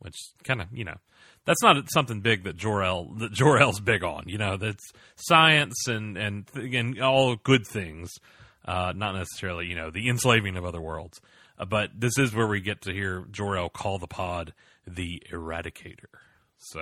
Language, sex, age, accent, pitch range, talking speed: English, male, 30-49, American, 90-115 Hz, 180 wpm